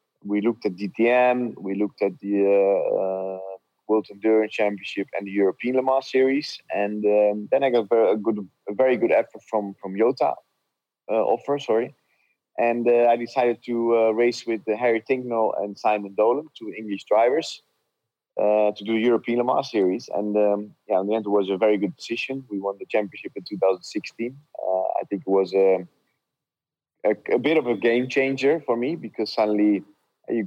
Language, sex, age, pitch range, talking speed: English, male, 30-49, 95-115 Hz, 200 wpm